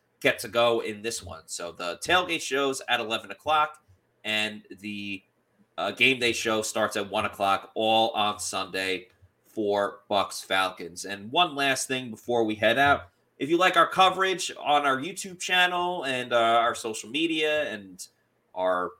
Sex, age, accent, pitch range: male, 30-49, American, 110-145 Hz